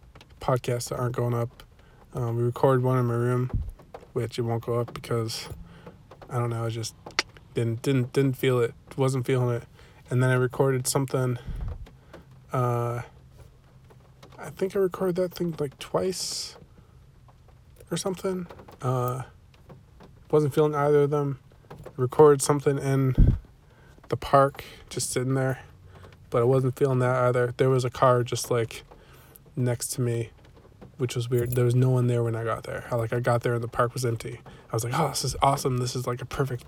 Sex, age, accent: male, 20-39, American